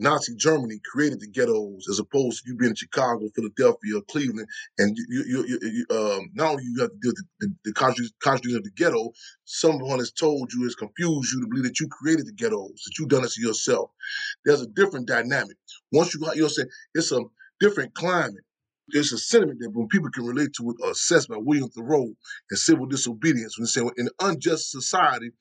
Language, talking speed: English, 215 wpm